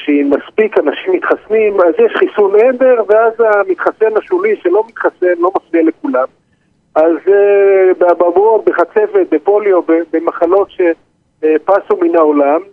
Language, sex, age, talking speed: Hebrew, male, 50-69, 120 wpm